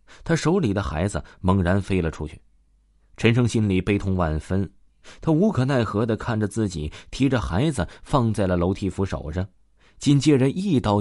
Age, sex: 20-39, male